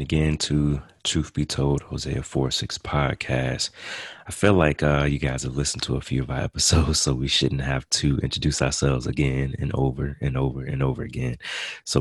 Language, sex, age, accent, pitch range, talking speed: English, male, 30-49, American, 65-75 Hz, 200 wpm